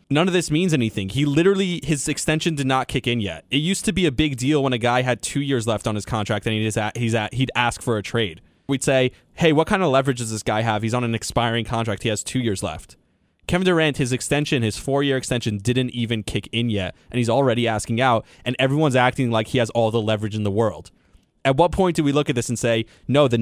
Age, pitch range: 20-39, 115-160 Hz